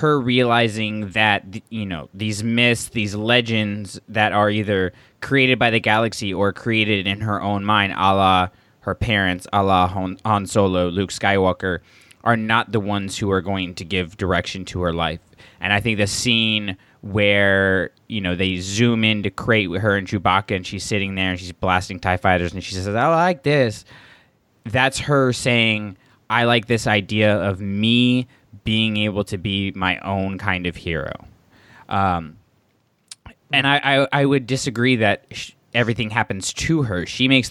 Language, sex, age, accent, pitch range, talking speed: English, male, 20-39, American, 95-115 Hz, 175 wpm